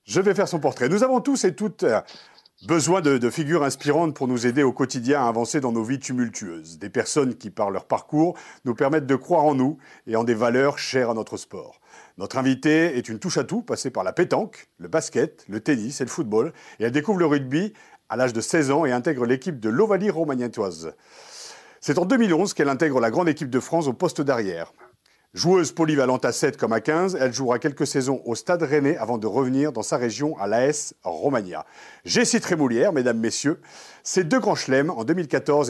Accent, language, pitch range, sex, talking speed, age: French, French, 130-170 Hz, male, 210 wpm, 50-69